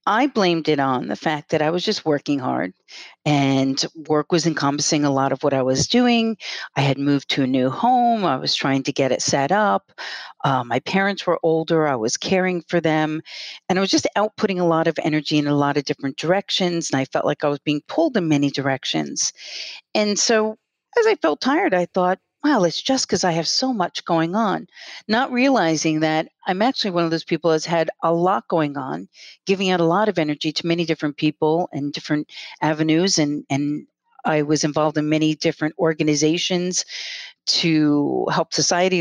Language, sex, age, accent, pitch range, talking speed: English, female, 40-59, American, 150-195 Hz, 205 wpm